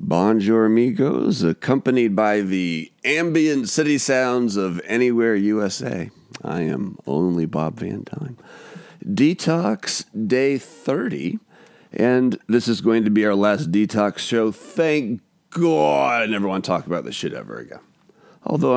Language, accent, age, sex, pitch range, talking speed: English, American, 40-59, male, 100-150 Hz, 135 wpm